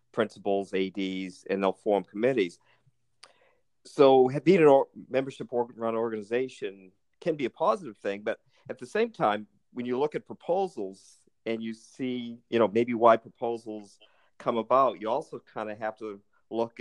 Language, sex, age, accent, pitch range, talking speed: English, male, 50-69, American, 105-120 Hz, 155 wpm